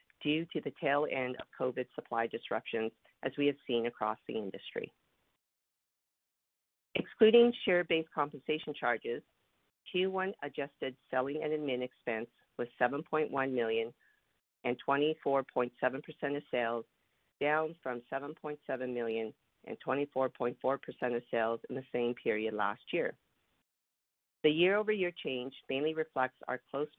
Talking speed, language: 120 wpm, English